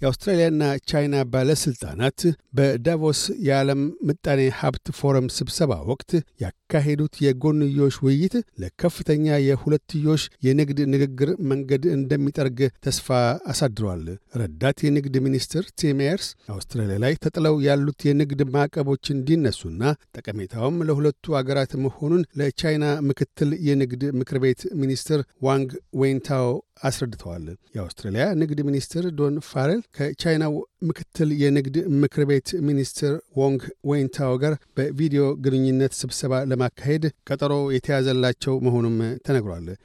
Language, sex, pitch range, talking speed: Amharic, male, 130-150 Hz, 100 wpm